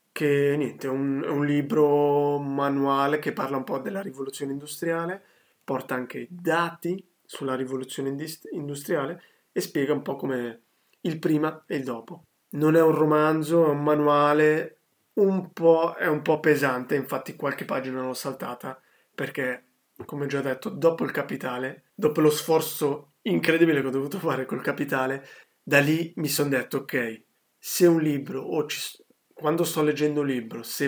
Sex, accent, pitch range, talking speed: male, native, 135-160 Hz, 160 wpm